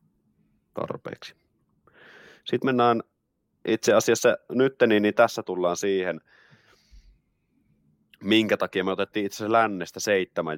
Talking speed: 100 wpm